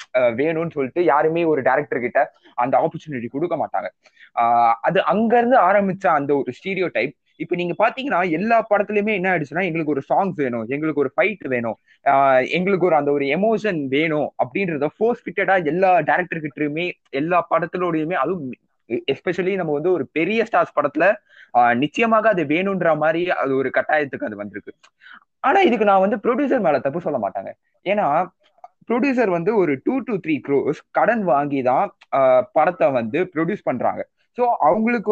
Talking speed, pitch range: 125 wpm, 145-210 Hz